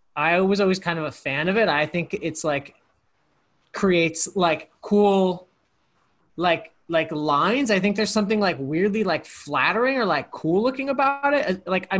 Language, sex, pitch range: English, male, 145-180 Hz